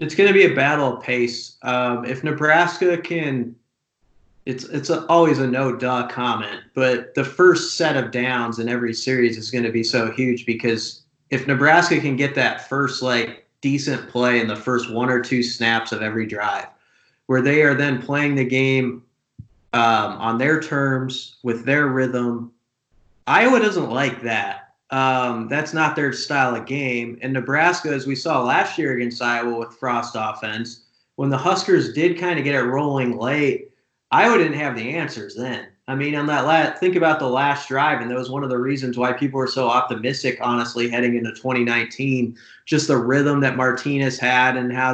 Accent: American